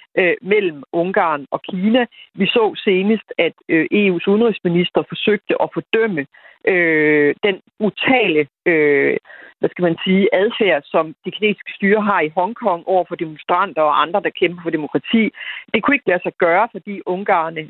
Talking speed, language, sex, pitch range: 140 wpm, Danish, female, 165-220 Hz